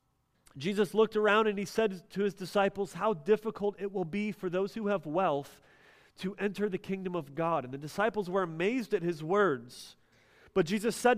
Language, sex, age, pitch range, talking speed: English, male, 30-49, 140-210 Hz, 195 wpm